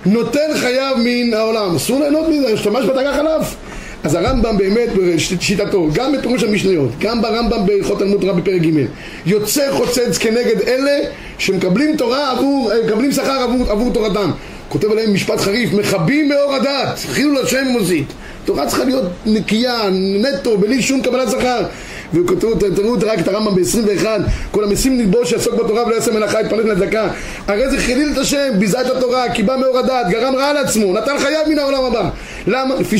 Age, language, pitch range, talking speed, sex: 30-49, Hebrew, 205-260 Hz, 165 wpm, male